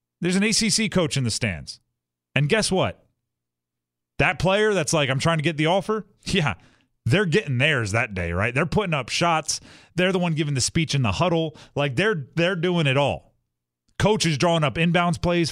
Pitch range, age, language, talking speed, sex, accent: 125-185 Hz, 30-49, English, 200 wpm, male, American